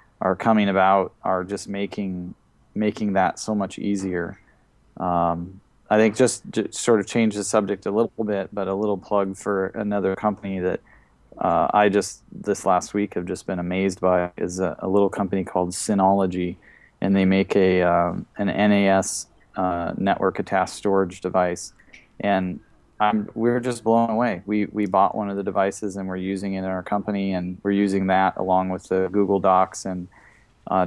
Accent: American